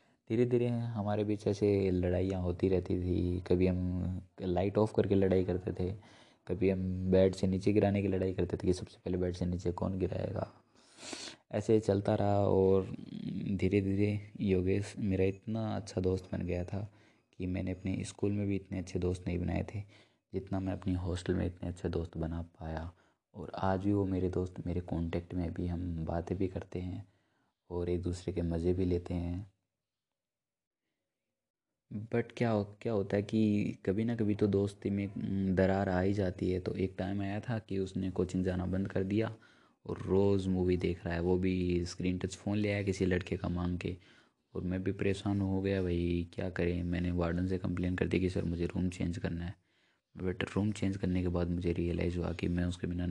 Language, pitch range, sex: Hindi, 90-100 Hz, male